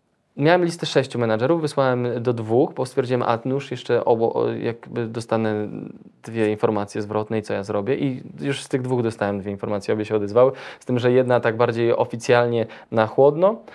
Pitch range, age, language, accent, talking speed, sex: 110-150 Hz, 20-39, Polish, native, 185 wpm, male